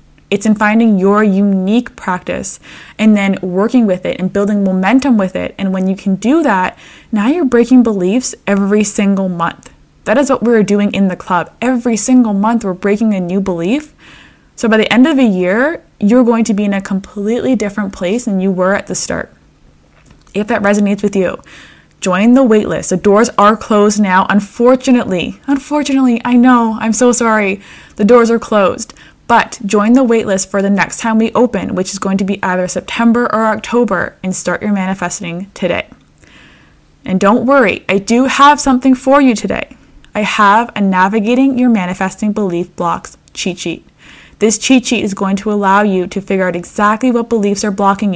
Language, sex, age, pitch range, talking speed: English, female, 10-29, 195-235 Hz, 190 wpm